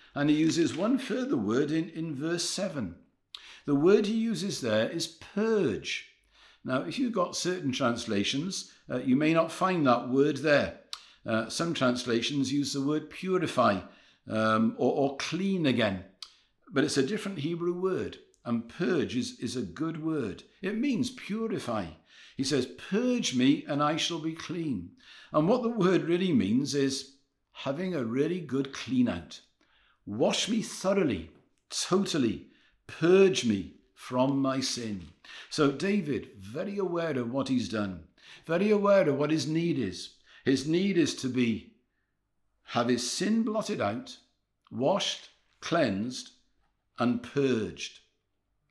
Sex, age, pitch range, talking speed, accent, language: male, 60-79, 125-185 Hz, 145 wpm, British, English